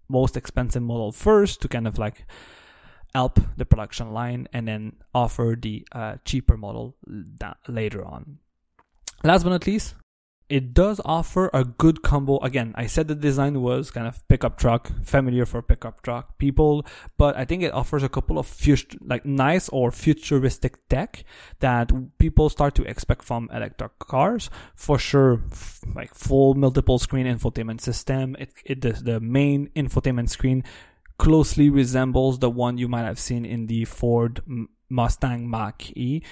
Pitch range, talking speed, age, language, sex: 115-140 Hz, 165 wpm, 20-39, English, male